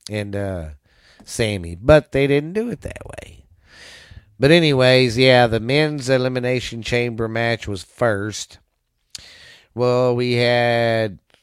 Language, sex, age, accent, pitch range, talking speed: English, male, 30-49, American, 110-135 Hz, 120 wpm